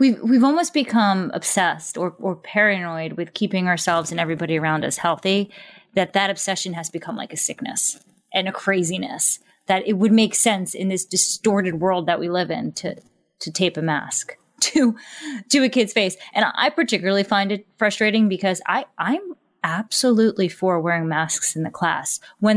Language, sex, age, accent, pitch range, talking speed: English, female, 20-39, American, 180-230 Hz, 180 wpm